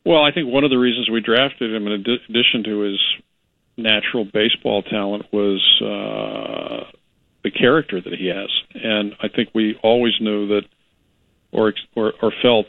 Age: 50-69